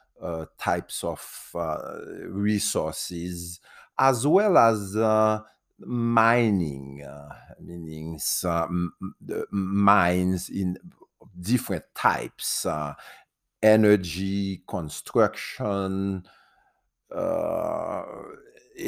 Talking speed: 65 wpm